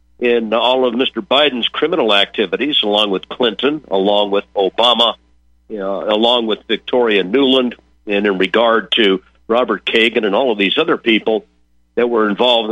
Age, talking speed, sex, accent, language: 50-69, 155 wpm, male, American, English